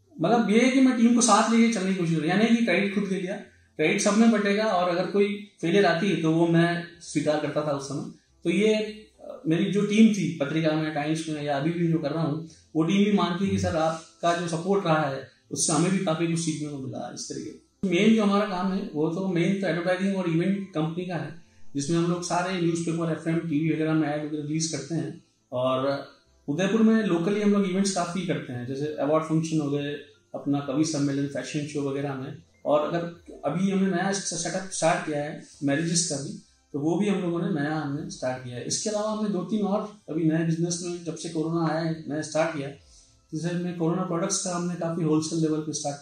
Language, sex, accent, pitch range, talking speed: Hindi, male, native, 150-185 Hz, 235 wpm